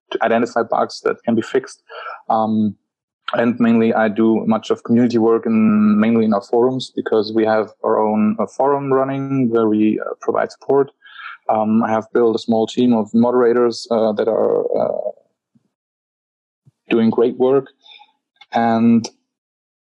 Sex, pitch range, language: male, 115-165 Hz, English